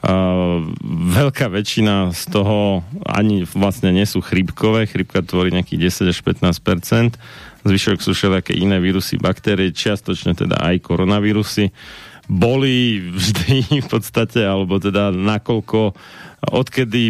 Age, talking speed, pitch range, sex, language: 30-49, 120 wpm, 95-110 Hz, male, Slovak